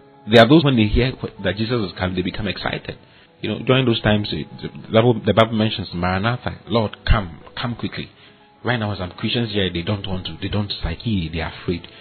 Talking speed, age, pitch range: 200 wpm, 40-59, 90-110 Hz